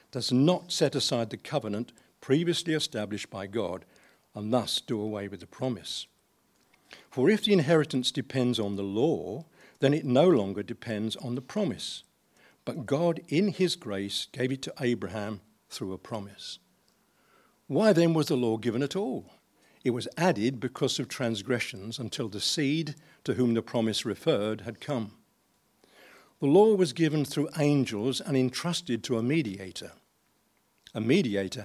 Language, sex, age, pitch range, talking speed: English, male, 60-79, 110-155 Hz, 155 wpm